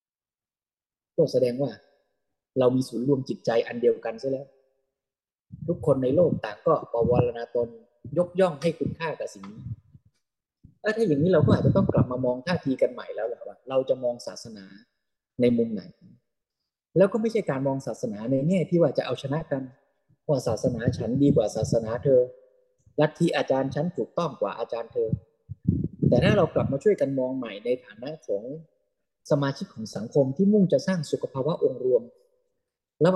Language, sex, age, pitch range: Thai, male, 20-39, 130-205 Hz